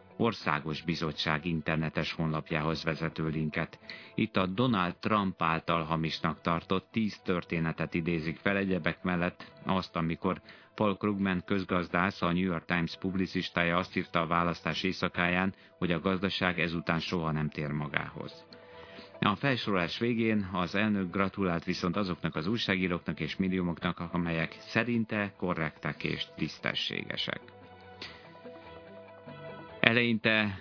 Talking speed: 120 wpm